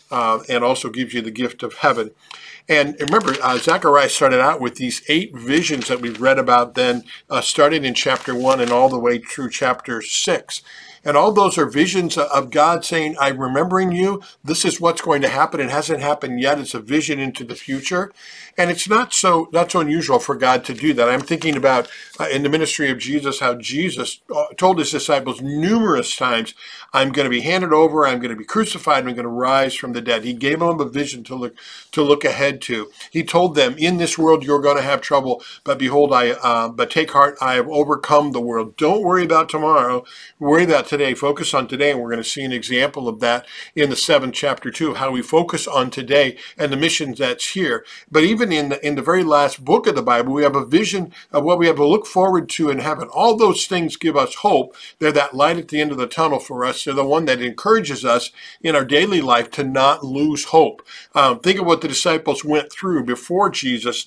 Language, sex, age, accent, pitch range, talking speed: English, male, 50-69, American, 130-160 Hz, 230 wpm